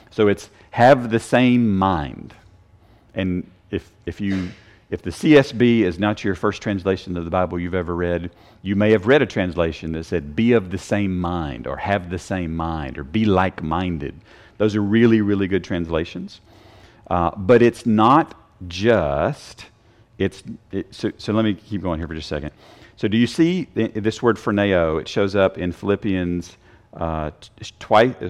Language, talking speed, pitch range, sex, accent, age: English, 180 wpm, 90-110 Hz, male, American, 40-59